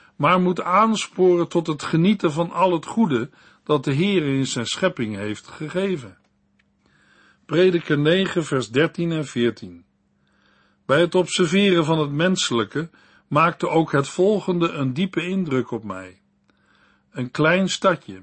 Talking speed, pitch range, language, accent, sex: 140 wpm, 135-180 Hz, Dutch, Dutch, male